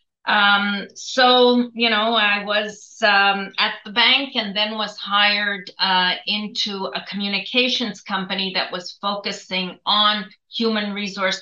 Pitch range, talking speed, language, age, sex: 180-210 Hz, 130 wpm, English, 40-59, female